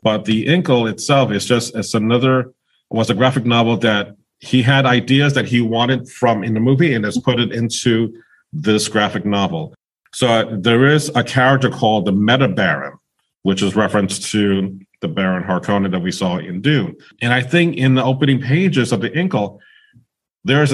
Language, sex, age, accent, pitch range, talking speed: English, male, 40-59, American, 110-140 Hz, 185 wpm